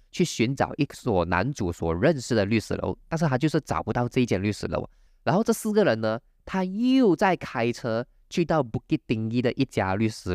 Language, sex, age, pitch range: Chinese, male, 20-39, 100-150 Hz